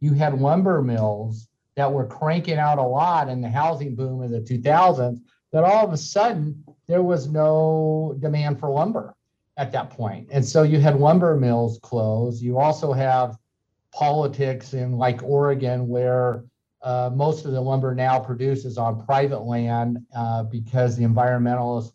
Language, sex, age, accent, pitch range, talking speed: English, male, 50-69, American, 120-155 Hz, 165 wpm